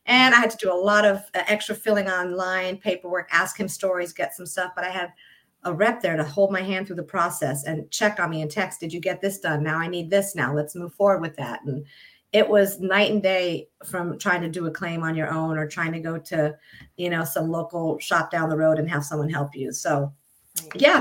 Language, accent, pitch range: English, American, 175-220 Hz